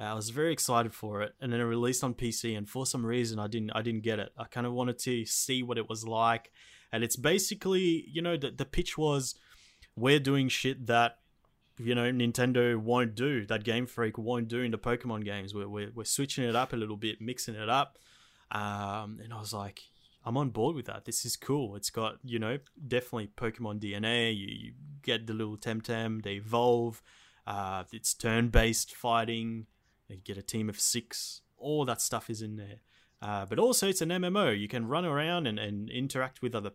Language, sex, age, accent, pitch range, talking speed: English, male, 20-39, Australian, 110-125 Hz, 210 wpm